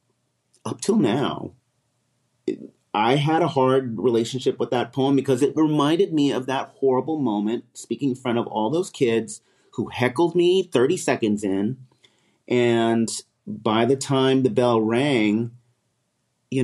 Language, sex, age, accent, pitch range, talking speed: English, male, 30-49, American, 120-155 Hz, 145 wpm